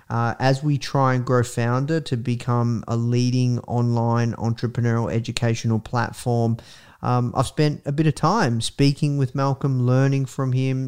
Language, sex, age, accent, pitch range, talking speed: English, male, 30-49, Australian, 120-140 Hz, 155 wpm